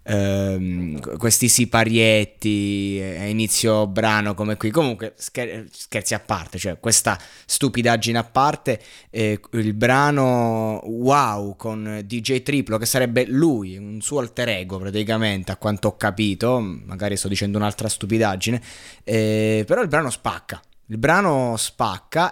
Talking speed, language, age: 130 wpm, Italian, 20-39